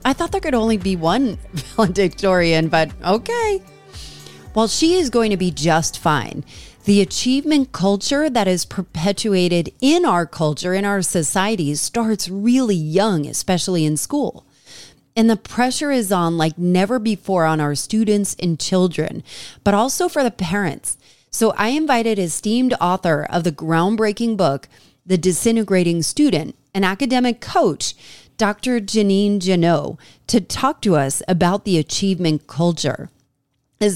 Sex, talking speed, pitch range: female, 145 wpm, 165-230 Hz